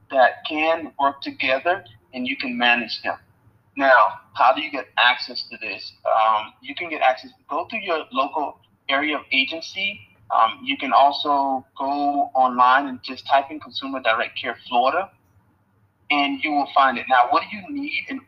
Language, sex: English, male